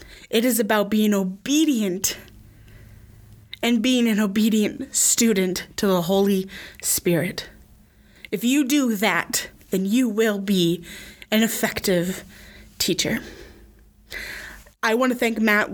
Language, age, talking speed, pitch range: English, 20-39, 115 wpm, 200-250 Hz